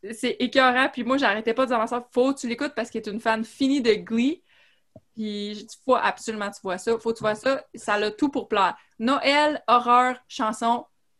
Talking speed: 230 wpm